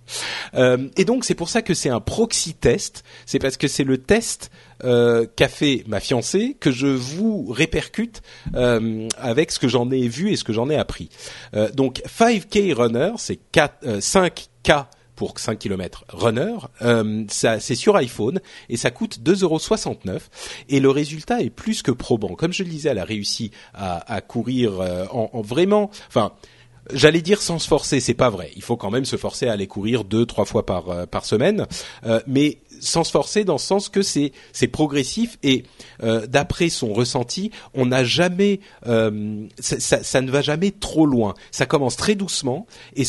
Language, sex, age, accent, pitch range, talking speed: French, male, 40-59, French, 115-175 Hz, 190 wpm